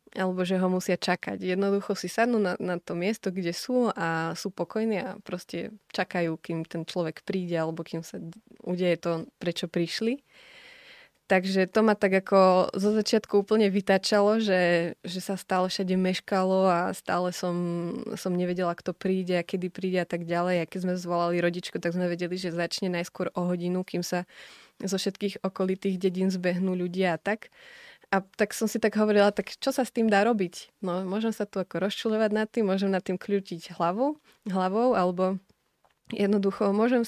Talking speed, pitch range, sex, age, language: 180 wpm, 180-215 Hz, female, 20-39, Slovak